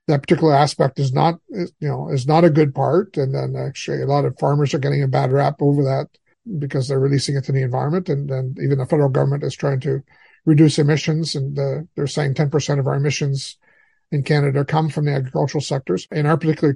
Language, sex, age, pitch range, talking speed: English, male, 50-69, 140-165 Hz, 220 wpm